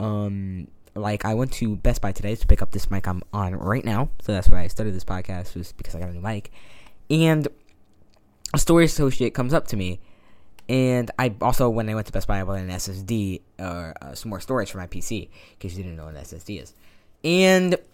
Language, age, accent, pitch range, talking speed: English, 10-29, American, 100-140 Hz, 240 wpm